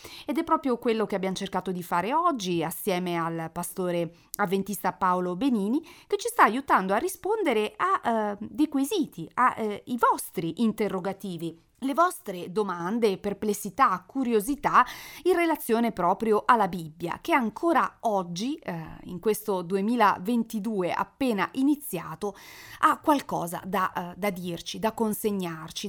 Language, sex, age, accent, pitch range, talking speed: Italian, female, 30-49, native, 180-220 Hz, 125 wpm